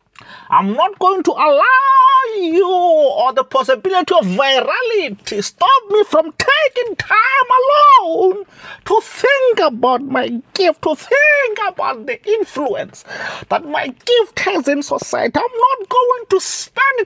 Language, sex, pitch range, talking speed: English, male, 285-460 Hz, 135 wpm